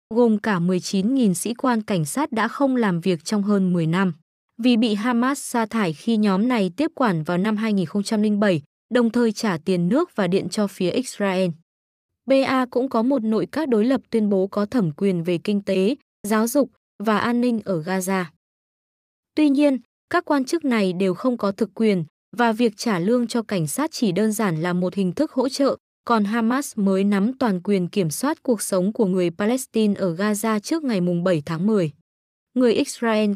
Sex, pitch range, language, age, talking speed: female, 195-245 Hz, Vietnamese, 20-39, 200 wpm